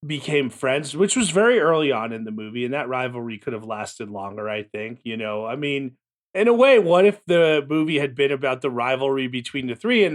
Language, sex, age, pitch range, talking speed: English, male, 30-49, 120-150 Hz, 230 wpm